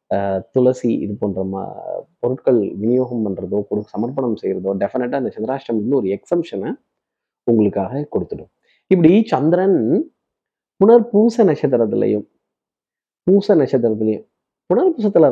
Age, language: 20-39, Tamil